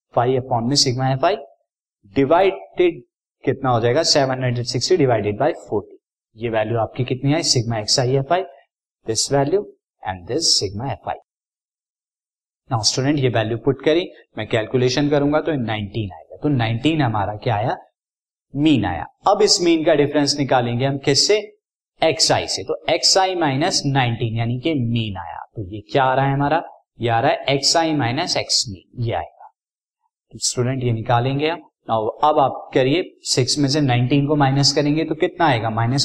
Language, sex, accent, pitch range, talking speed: Hindi, male, native, 120-155 Hz, 90 wpm